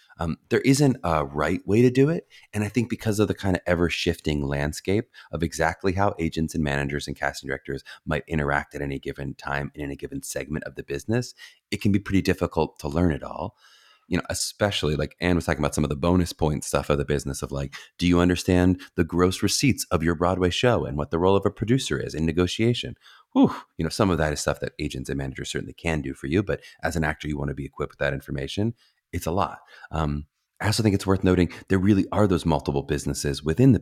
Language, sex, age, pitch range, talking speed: English, male, 30-49, 75-95 Hz, 240 wpm